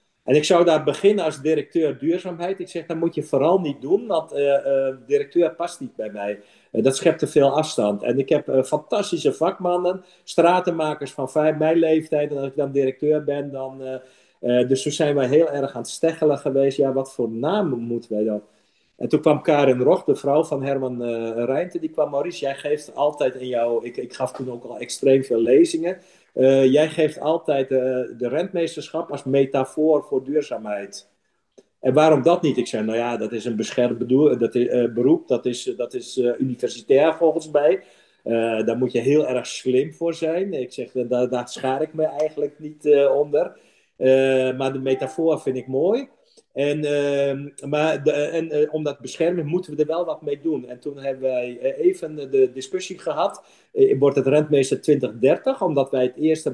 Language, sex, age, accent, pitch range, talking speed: Dutch, male, 50-69, Dutch, 130-165 Hz, 200 wpm